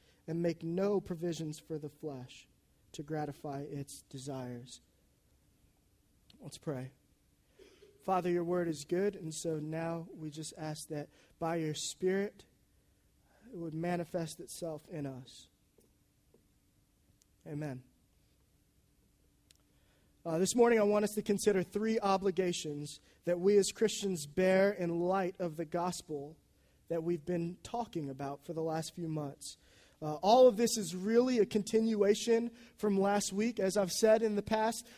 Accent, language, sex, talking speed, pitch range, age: American, English, male, 140 wpm, 165-225 Hz, 20-39